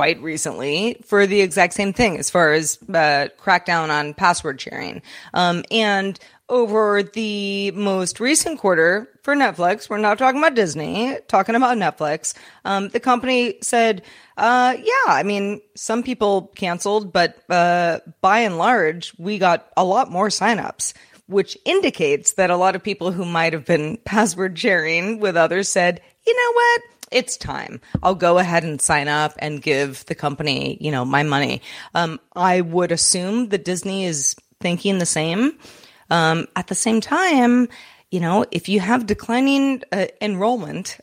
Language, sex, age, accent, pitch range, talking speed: English, female, 30-49, American, 165-220 Hz, 165 wpm